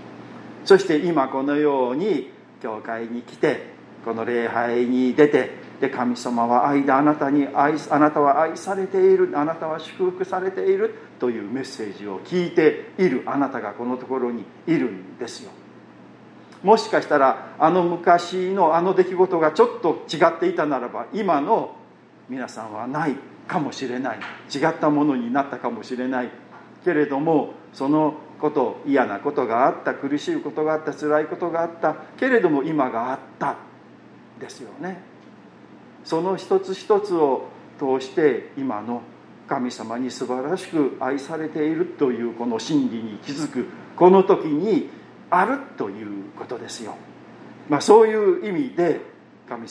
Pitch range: 125-185 Hz